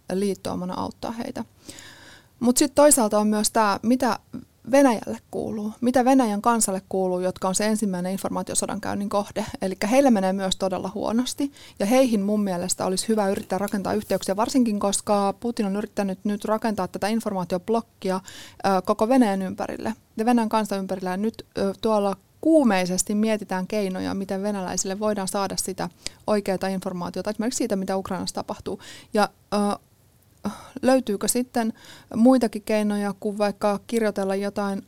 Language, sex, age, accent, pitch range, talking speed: Finnish, female, 20-39, native, 190-220 Hz, 140 wpm